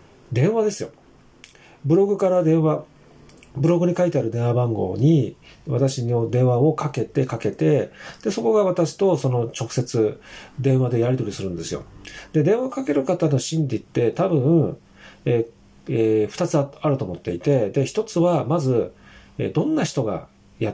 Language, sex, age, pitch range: Japanese, male, 40-59, 125-175 Hz